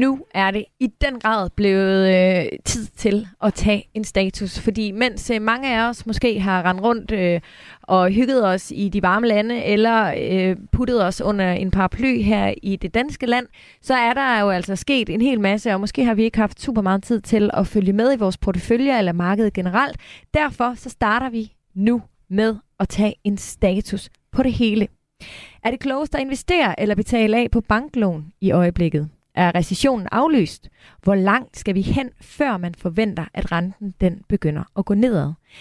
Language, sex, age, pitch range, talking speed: Danish, female, 20-39, 190-235 Hz, 195 wpm